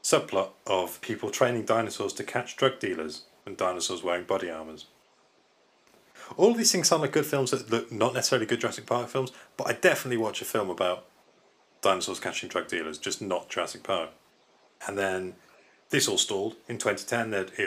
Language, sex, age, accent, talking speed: English, male, 30-49, British, 175 wpm